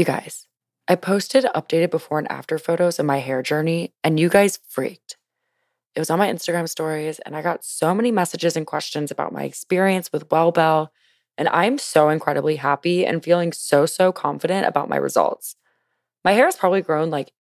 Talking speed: 190 wpm